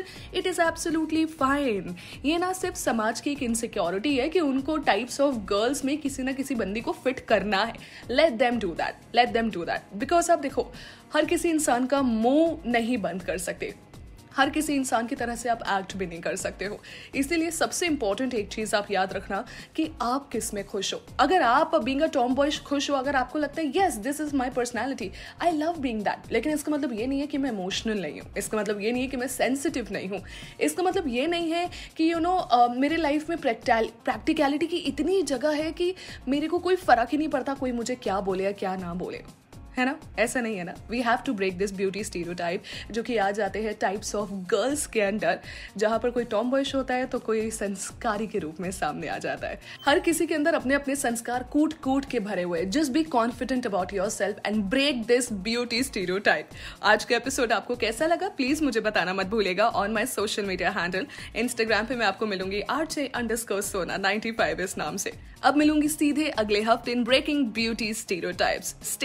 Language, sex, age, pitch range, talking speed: Hindi, female, 20-39, 215-295 Hz, 200 wpm